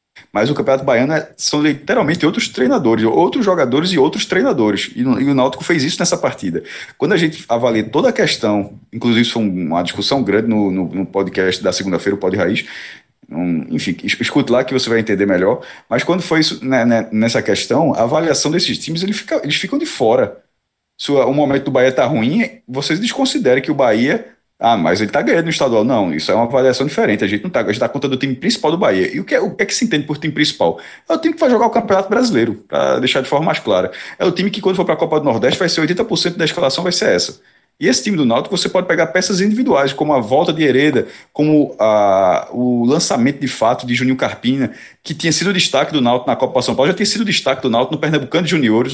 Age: 20-39